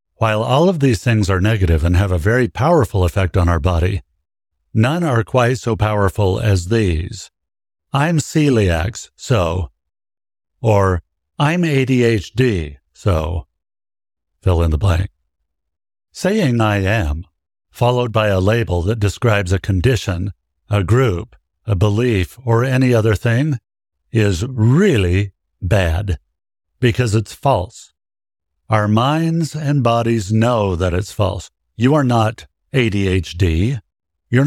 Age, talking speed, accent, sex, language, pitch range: 60-79, 125 wpm, American, male, English, 85-120 Hz